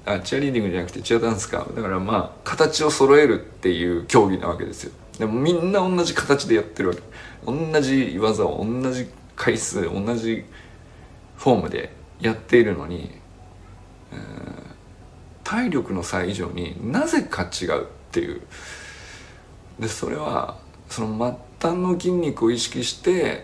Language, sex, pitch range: Japanese, male, 95-130 Hz